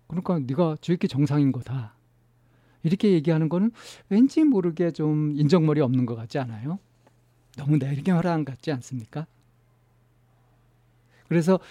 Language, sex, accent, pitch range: Korean, male, native, 120-165 Hz